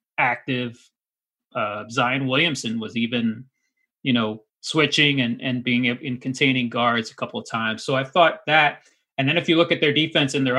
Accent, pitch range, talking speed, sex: American, 120-145 Hz, 185 wpm, male